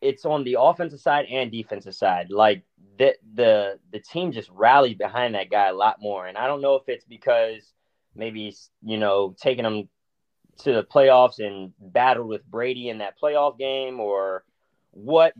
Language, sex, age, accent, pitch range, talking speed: English, male, 20-39, American, 100-130 Hz, 180 wpm